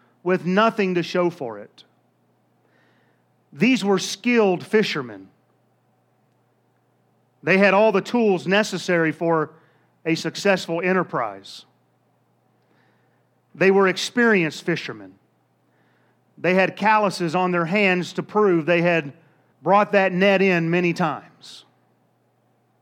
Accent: American